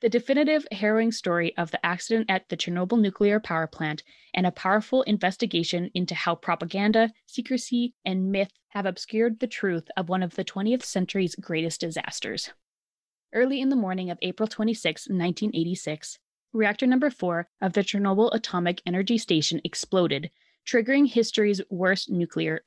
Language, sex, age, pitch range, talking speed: English, female, 20-39, 180-230 Hz, 150 wpm